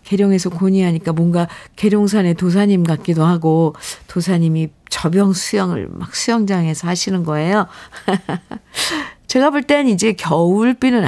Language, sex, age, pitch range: Korean, female, 50-69, 160-200 Hz